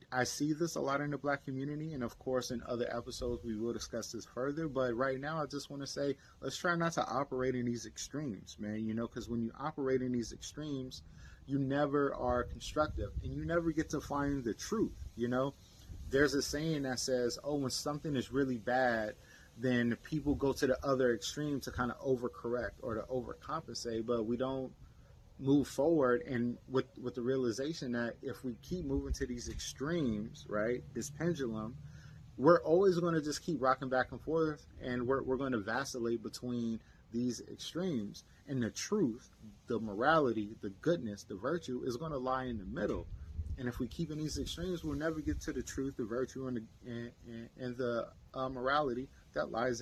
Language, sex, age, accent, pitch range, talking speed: English, male, 30-49, American, 120-140 Hz, 200 wpm